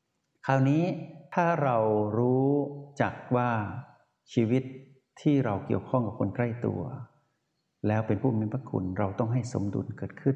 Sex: male